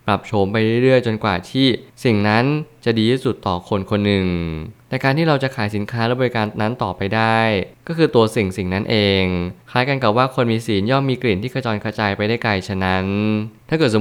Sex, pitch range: male, 100-120 Hz